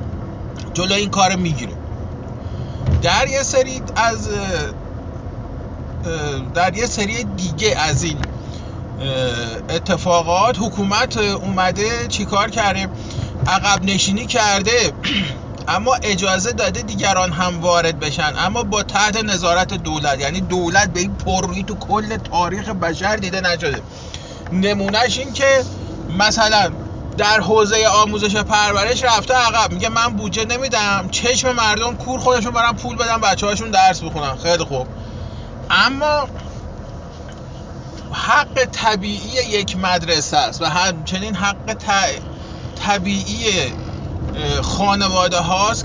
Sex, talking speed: male, 115 wpm